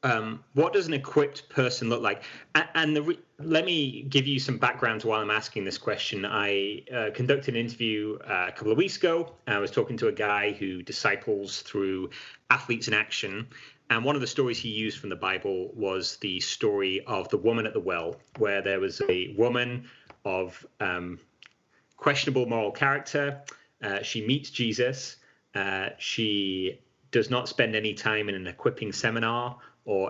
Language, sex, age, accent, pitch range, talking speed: English, male, 30-49, British, 105-150 Hz, 185 wpm